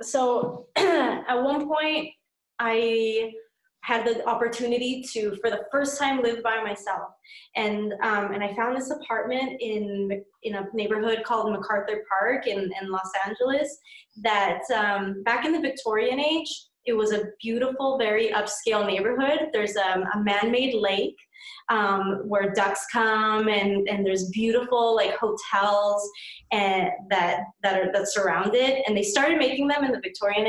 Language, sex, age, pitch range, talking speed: English, female, 20-39, 200-245 Hz, 155 wpm